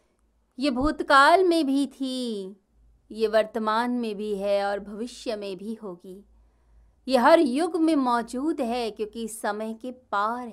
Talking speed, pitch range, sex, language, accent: 150 wpm, 195-260 Hz, female, Hindi, native